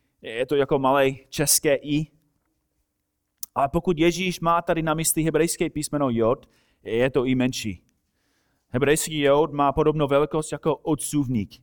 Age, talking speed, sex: 30-49, 140 wpm, male